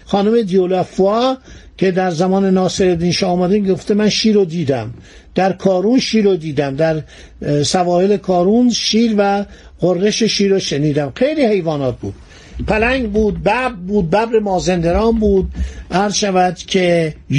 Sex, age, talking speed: male, 50-69, 130 wpm